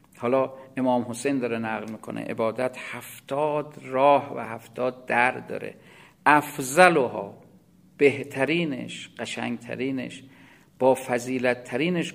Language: English